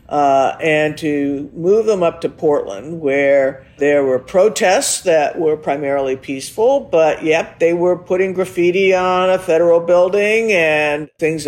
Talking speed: 145 wpm